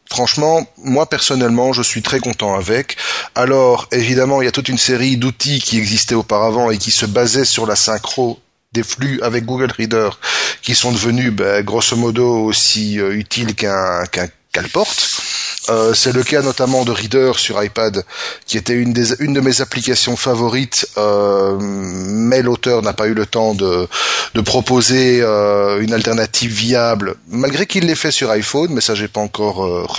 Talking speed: 175 wpm